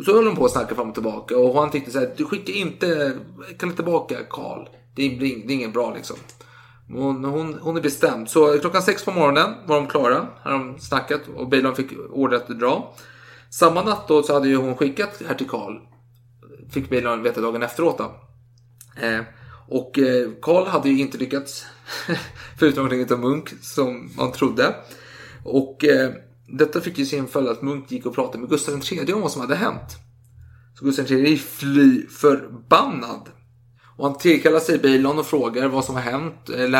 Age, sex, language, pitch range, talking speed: 30-49, male, Swedish, 120-145 Hz, 190 wpm